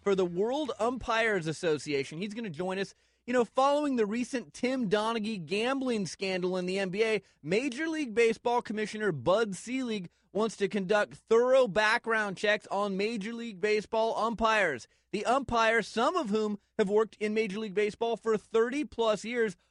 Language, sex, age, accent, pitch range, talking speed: English, male, 30-49, American, 190-230 Hz, 160 wpm